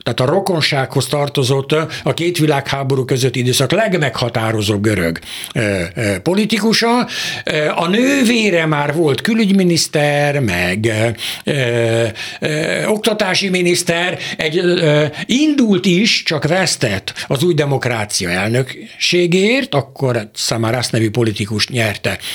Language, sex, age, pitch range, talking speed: Hungarian, male, 60-79, 135-205 Hz, 110 wpm